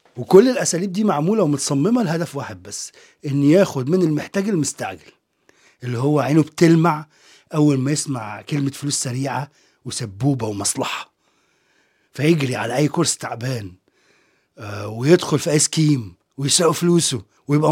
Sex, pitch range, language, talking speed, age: male, 120-155 Hz, Arabic, 125 wpm, 30-49